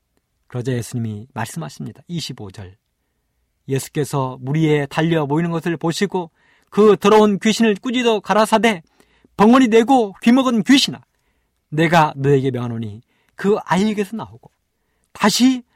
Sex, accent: male, native